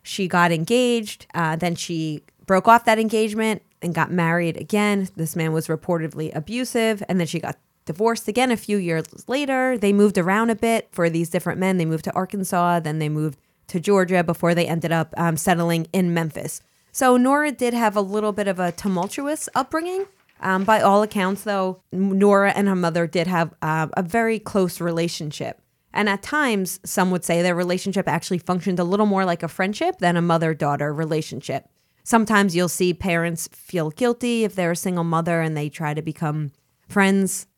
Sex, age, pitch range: female, 20-39, 170-210 Hz